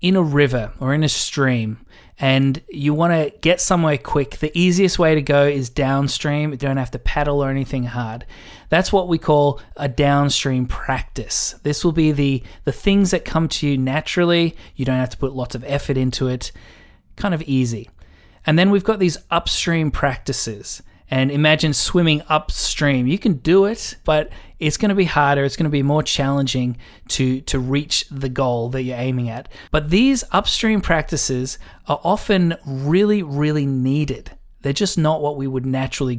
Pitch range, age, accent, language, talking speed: 130-170 Hz, 20-39, Australian, English, 180 wpm